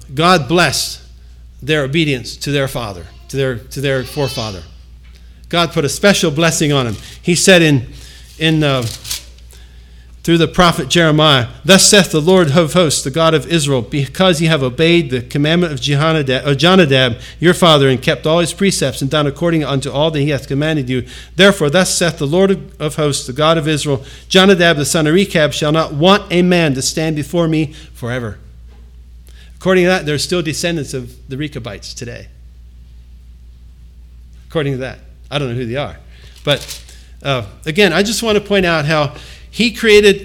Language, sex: English, male